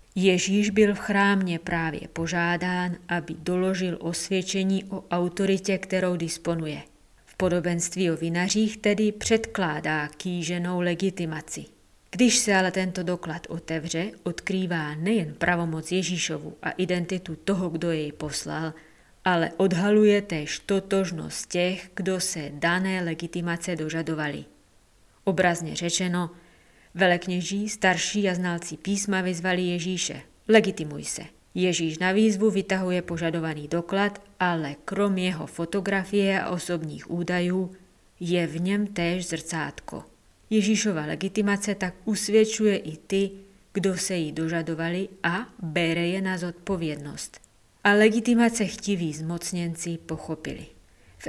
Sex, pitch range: female, 165-195 Hz